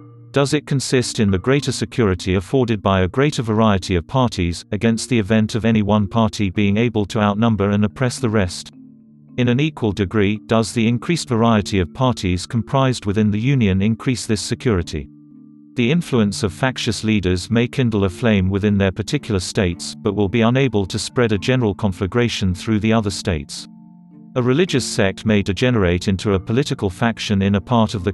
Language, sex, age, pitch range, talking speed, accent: English, male, 40-59, 100-120 Hz, 185 wpm, British